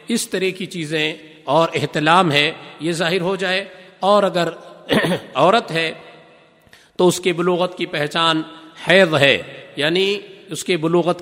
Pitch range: 165-215 Hz